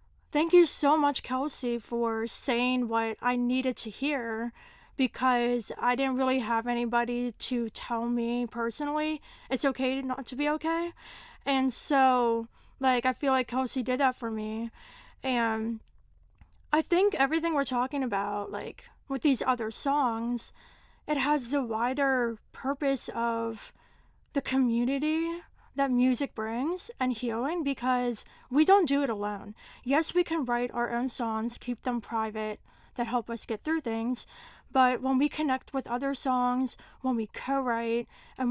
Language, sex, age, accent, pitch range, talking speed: English, female, 20-39, American, 235-275 Hz, 150 wpm